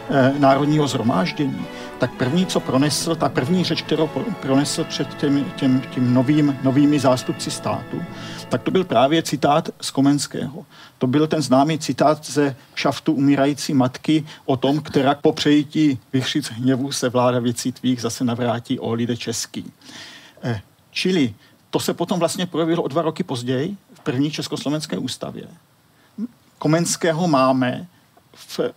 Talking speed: 140 wpm